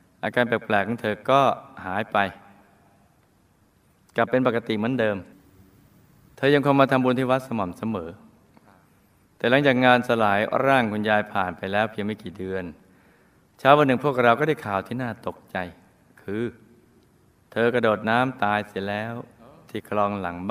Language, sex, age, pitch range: Thai, male, 20-39, 100-130 Hz